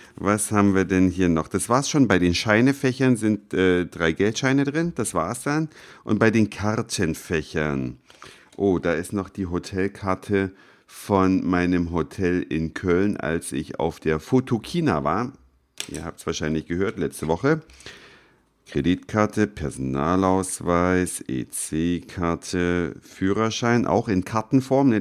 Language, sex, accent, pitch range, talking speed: German, male, German, 85-120 Hz, 135 wpm